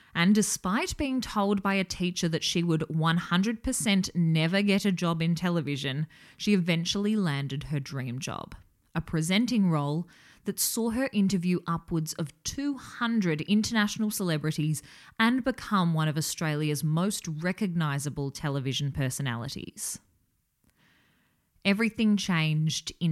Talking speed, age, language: 120 wpm, 20-39, English